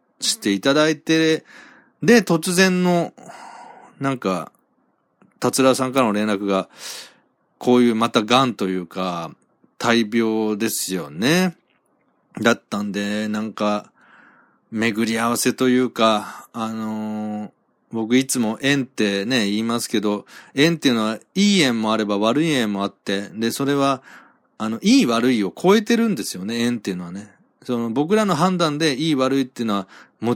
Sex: male